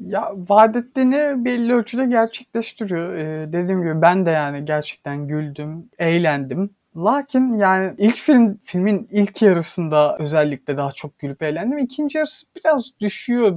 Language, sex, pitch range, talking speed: Turkish, male, 155-200 Hz, 135 wpm